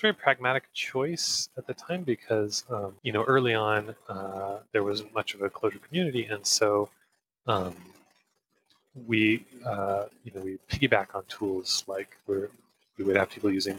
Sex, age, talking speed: male, 30-49, 165 wpm